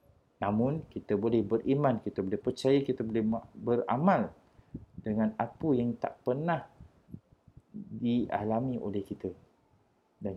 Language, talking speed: Malay, 110 wpm